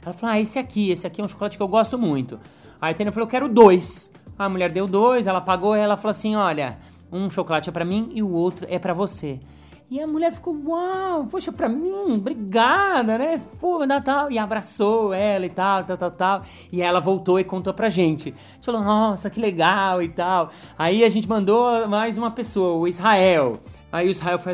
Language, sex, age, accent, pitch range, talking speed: Portuguese, male, 30-49, Brazilian, 170-225 Hz, 225 wpm